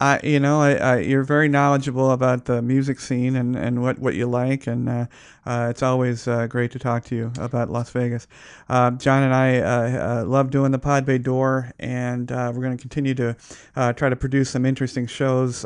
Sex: male